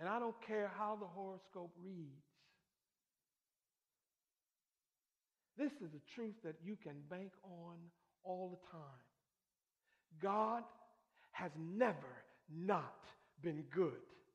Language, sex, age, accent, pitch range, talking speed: English, male, 50-69, American, 225-330 Hz, 110 wpm